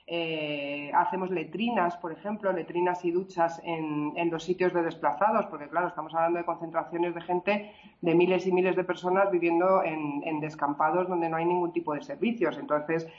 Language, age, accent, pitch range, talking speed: Spanish, 30-49, Spanish, 155-185 Hz, 180 wpm